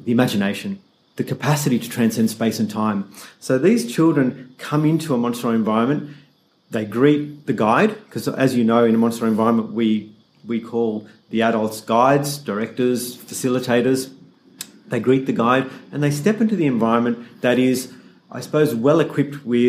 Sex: male